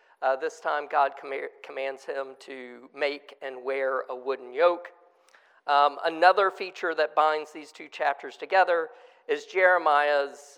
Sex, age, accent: male, 50-69, American